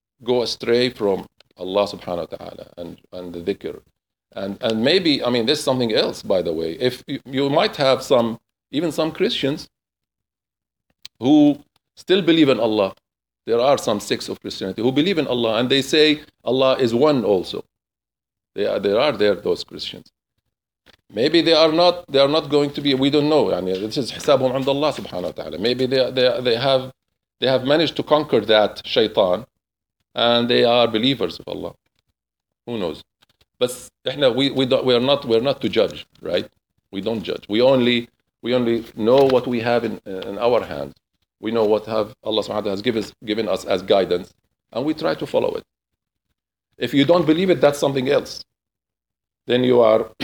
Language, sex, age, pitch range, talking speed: English, male, 50-69, 115-155 Hz, 190 wpm